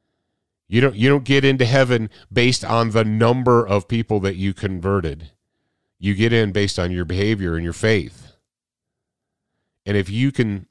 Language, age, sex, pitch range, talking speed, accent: English, 40-59, male, 100-145 Hz, 160 wpm, American